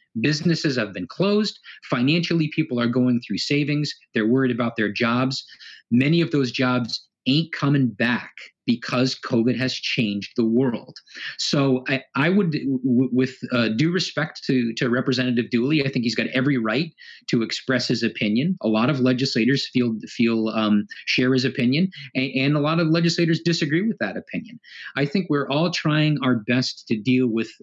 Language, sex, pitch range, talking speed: English, male, 120-145 Hz, 175 wpm